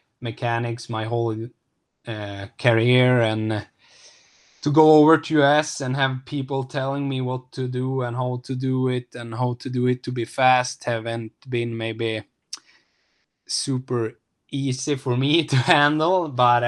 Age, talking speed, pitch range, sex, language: 10-29, 150 wpm, 115-135 Hz, male, English